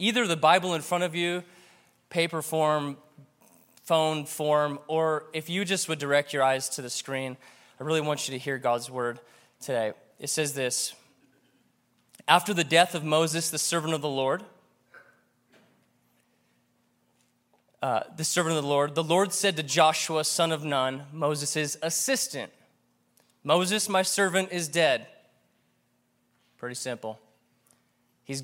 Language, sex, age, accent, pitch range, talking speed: English, male, 20-39, American, 145-185 Hz, 145 wpm